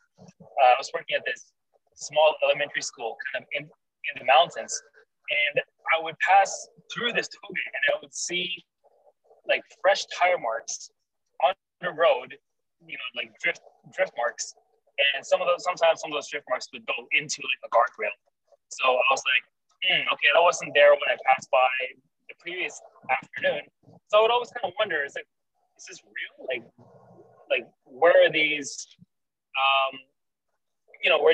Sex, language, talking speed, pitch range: male, English, 170 wpm, 145-245 Hz